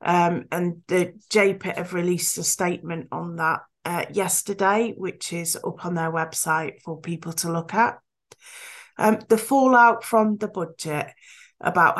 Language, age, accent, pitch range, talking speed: English, 30-49, British, 170-220 Hz, 150 wpm